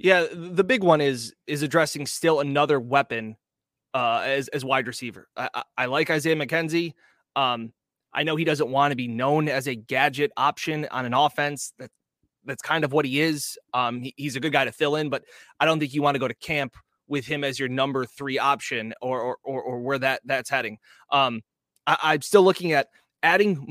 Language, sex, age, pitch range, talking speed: English, male, 20-39, 130-160 Hz, 215 wpm